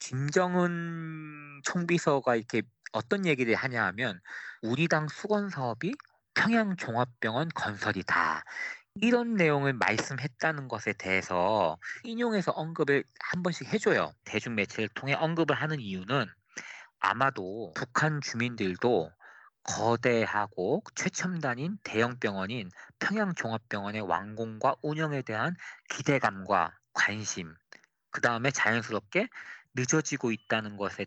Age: 40-59